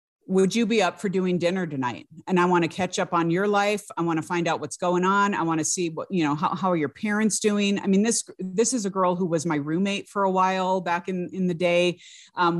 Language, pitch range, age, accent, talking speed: English, 160-200 Hz, 50-69, American, 275 wpm